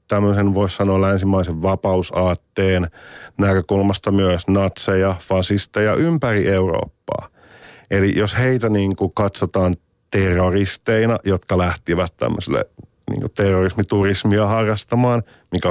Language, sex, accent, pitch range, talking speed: Finnish, male, native, 90-110 Hz, 85 wpm